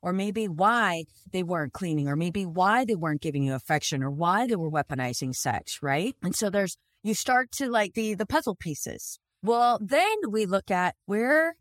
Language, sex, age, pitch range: English, female, 30-49, 175-230 Hz